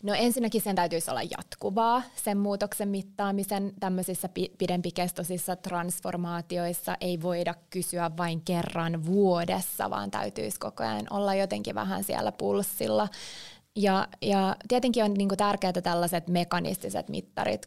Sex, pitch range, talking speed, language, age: female, 170-205 Hz, 115 wpm, Finnish, 20-39